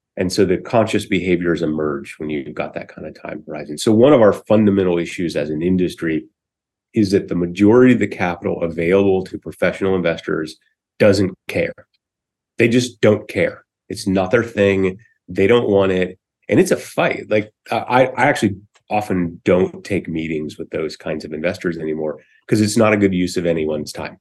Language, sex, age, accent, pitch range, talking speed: English, male, 30-49, American, 90-115 Hz, 185 wpm